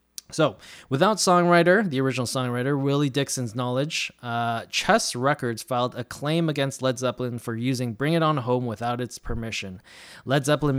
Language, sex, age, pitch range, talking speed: English, male, 20-39, 110-145 Hz, 160 wpm